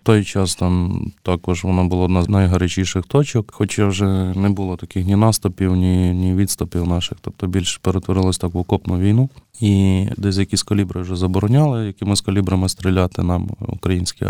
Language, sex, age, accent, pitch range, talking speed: Ukrainian, male, 20-39, native, 90-105 Hz, 170 wpm